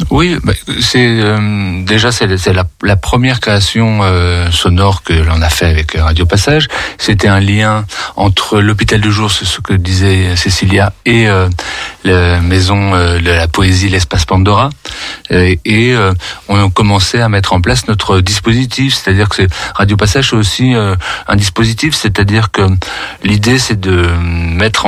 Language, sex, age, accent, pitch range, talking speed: French, male, 40-59, French, 90-110 Hz, 140 wpm